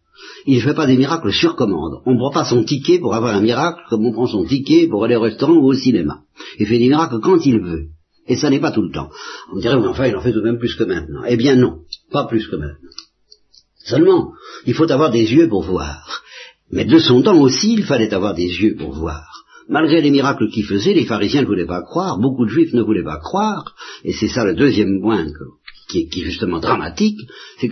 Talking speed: 240 wpm